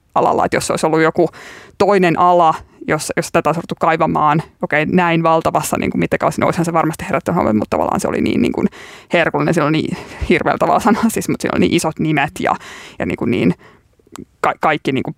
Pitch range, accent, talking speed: 165-180 Hz, native, 200 wpm